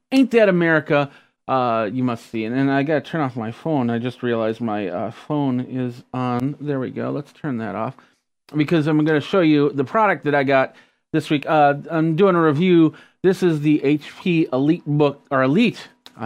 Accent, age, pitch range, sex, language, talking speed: American, 30-49, 125-150 Hz, male, English, 205 wpm